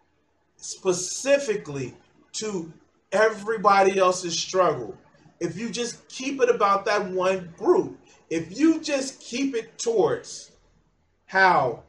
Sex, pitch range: male, 180-295 Hz